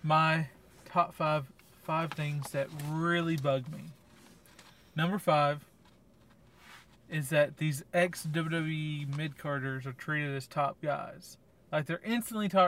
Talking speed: 125 wpm